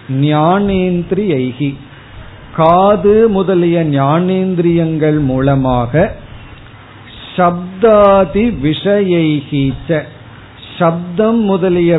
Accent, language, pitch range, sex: native, Tamil, 135-185 Hz, male